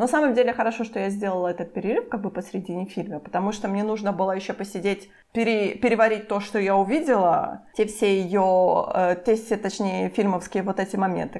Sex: female